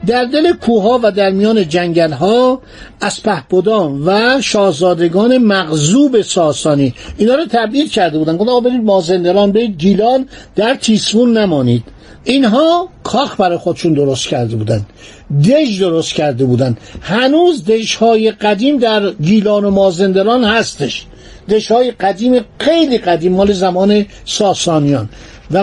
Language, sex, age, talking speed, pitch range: Persian, male, 50-69, 125 wpm, 175-235 Hz